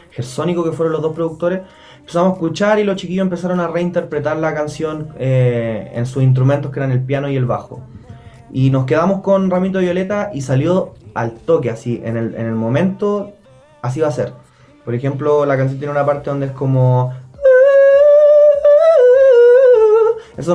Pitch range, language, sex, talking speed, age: 130-165 Hz, Spanish, male, 170 wpm, 20-39